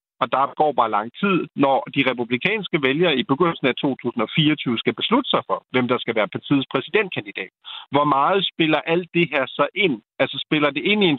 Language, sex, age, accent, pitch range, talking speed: Danish, male, 50-69, native, 125-160 Hz, 205 wpm